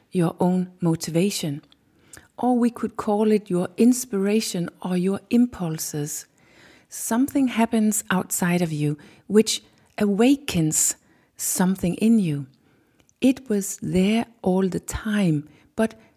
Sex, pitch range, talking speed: female, 165-230 Hz, 110 wpm